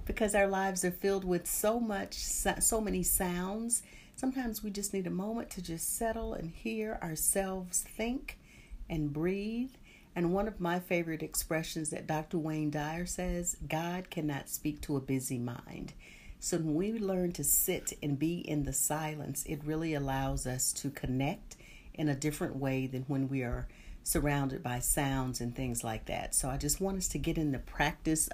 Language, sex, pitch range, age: English, female, 145-200 Hz, 50-69